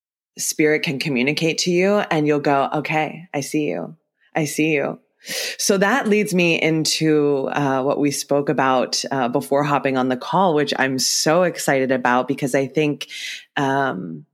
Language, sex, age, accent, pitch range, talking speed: English, female, 20-39, American, 135-155 Hz, 165 wpm